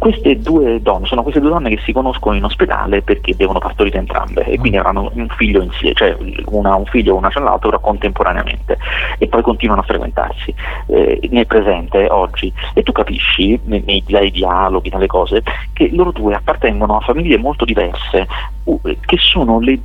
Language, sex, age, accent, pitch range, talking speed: Italian, male, 30-49, native, 100-145 Hz, 180 wpm